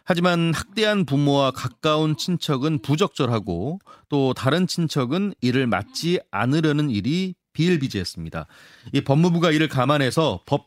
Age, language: 30-49, Korean